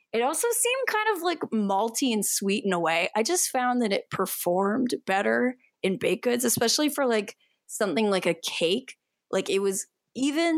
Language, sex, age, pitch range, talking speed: English, female, 20-39, 180-235 Hz, 185 wpm